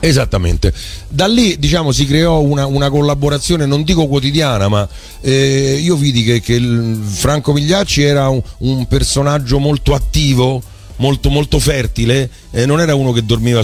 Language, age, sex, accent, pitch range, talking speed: Italian, 40-59, male, native, 100-140 Hz, 155 wpm